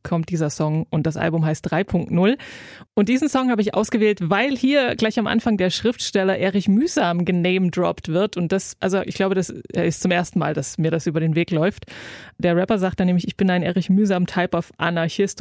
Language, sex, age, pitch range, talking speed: German, female, 20-39, 175-215 Hz, 210 wpm